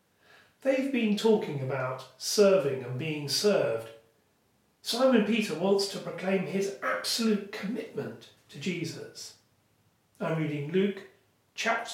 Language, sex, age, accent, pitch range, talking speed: English, male, 40-59, British, 135-205 Hz, 110 wpm